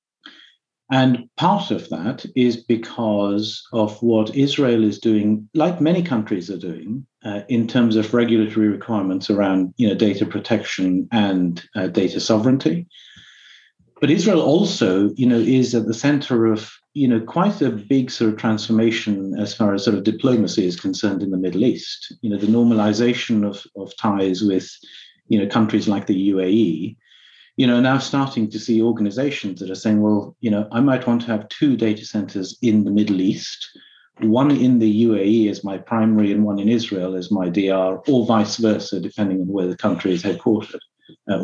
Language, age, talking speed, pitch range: English, 50-69, 180 wpm, 100-120 Hz